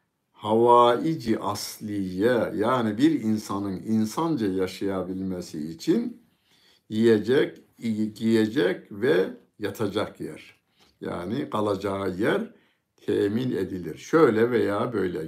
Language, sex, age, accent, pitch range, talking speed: Turkish, male, 60-79, native, 105-120 Hz, 85 wpm